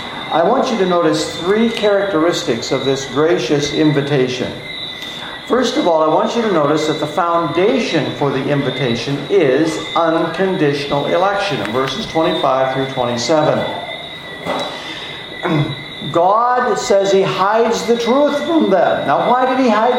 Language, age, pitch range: English, 60-79, 155-230 Hz